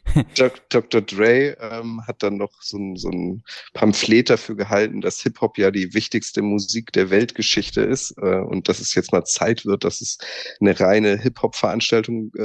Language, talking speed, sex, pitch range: German, 165 wpm, male, 95-115 Hz